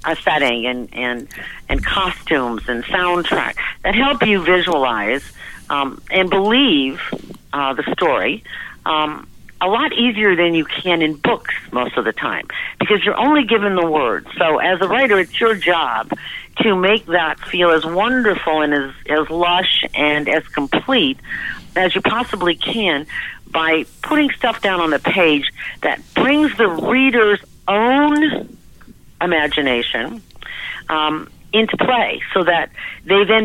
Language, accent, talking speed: English, American, 145 wpm